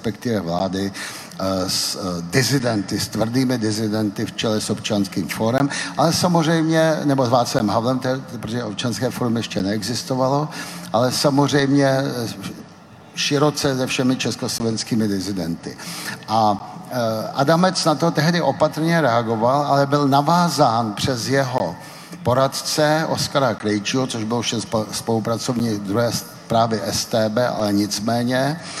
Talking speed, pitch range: 115 wpm, 110-145 Hz